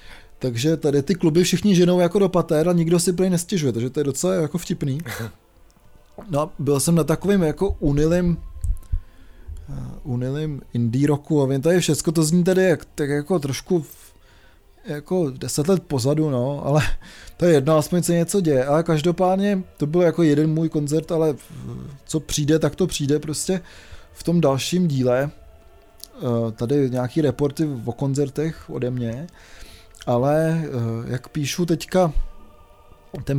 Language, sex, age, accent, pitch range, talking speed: Czech, male, 20-39, native, 120-165 Hz, 160 wpm